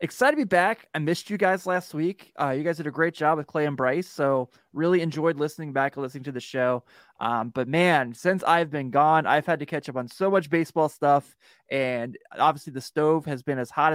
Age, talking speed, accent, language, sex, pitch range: 20-39, 240 wpm, American, English, male, 135-160 Hz